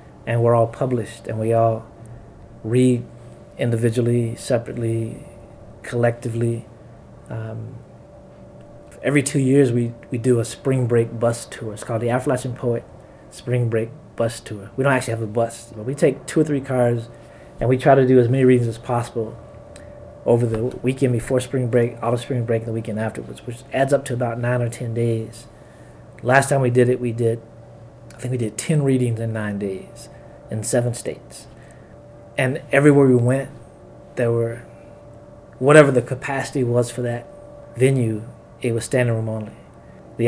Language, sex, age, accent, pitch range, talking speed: English, male, 30-49, American, 115-130 Hz, 170 wpm